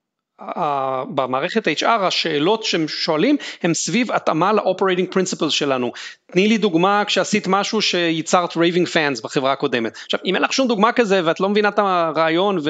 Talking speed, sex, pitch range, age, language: 155 wpm, male, 160-210 Hz, 30-49, Hebrew